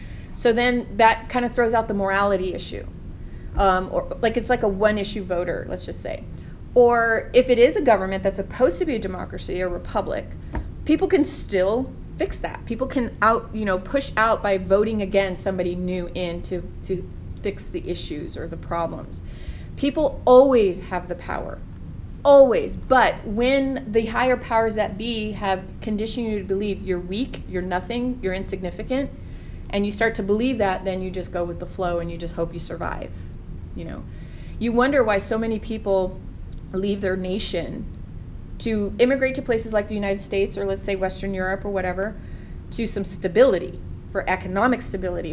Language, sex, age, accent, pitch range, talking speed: English, female, 30-49, American, 190-245 Hz, 180 wpm